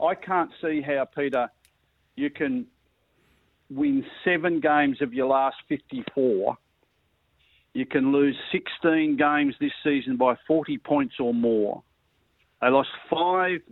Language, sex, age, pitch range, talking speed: English, male, 50-69, 120-175 Hz, 125 wpm